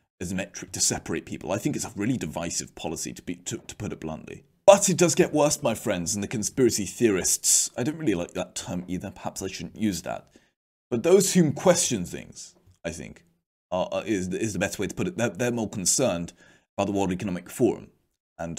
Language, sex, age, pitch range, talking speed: English, male, 30-49, 90-110 Hz, 225 wpm